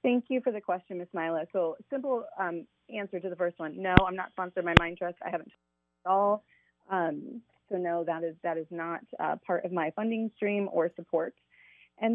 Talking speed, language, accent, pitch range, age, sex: 215 wpm, English, American, 170-205 Hz, 30-49, female